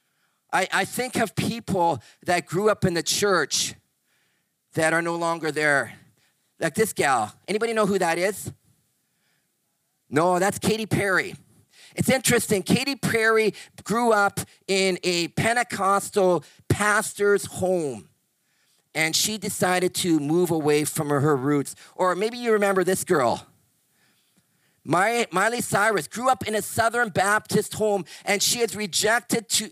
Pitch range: 165-215 Hz